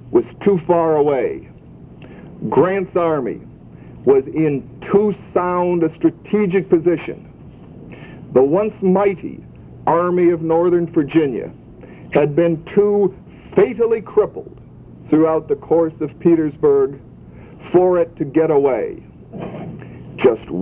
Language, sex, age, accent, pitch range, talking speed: English, male, 60-79, American, 155-200 Hz, 105 wpm